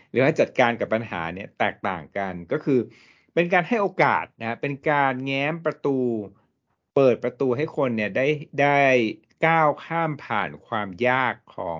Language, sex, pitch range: Thai, male, 105-135 Hz